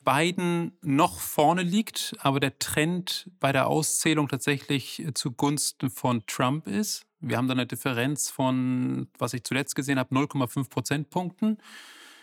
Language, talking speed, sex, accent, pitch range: German, 135 wpm, male, German, 140-175 Hz